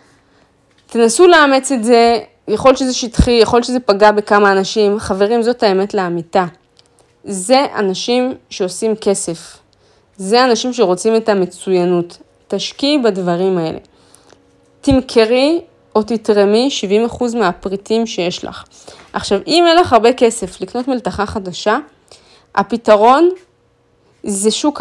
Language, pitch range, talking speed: Hebrew, 185-235 Hz, 120 wpm